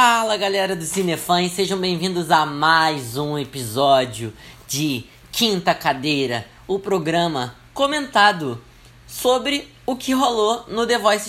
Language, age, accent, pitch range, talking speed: Portuguese, 10-29, Brazilian, 155-215 Hz, 120 wpm